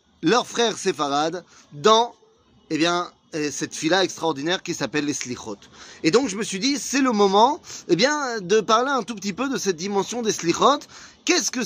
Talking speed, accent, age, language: 190 wpm, French, 30-49, French